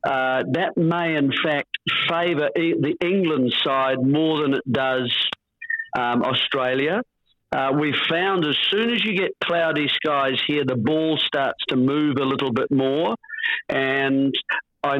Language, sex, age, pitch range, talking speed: English, male, 50-69, 130-165 Hz, 150 wpm